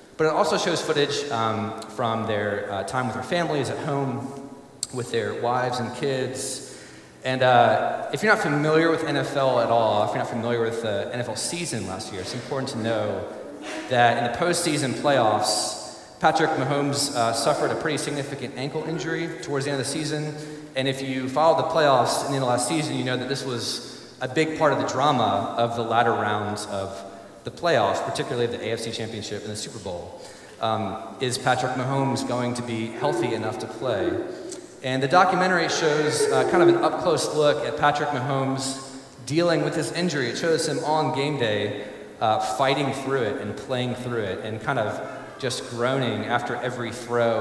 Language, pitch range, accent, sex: English, 120-150 Hz, American, male